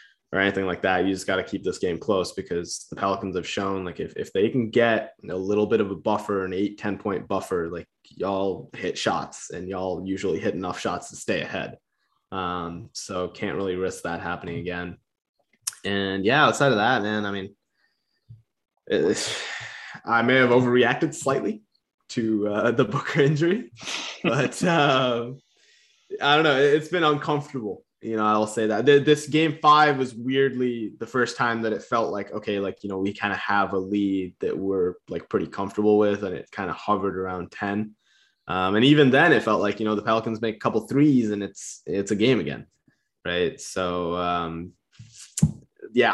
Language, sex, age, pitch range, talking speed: English, male, 20-39, 95-125 Hz, 190 wpm